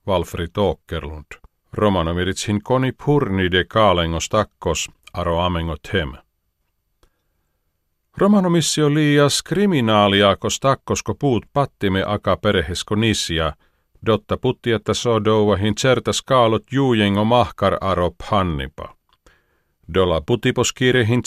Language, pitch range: Finnish, 85-115 Hz